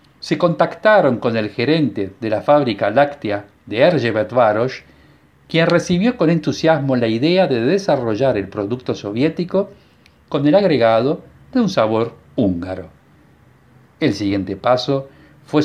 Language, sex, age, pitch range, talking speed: Spanish, male, 50-69, 110-165 Hz, 125 wpm